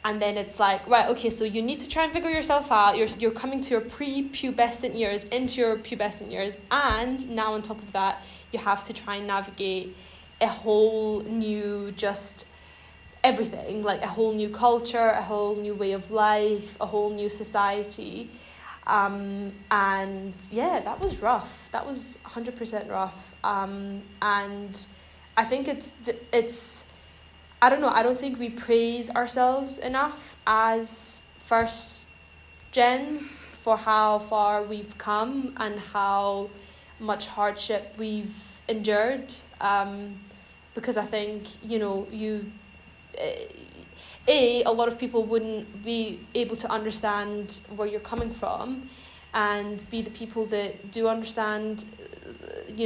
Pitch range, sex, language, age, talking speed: 205-235 Hz, female, English, 10-29, 150 wpm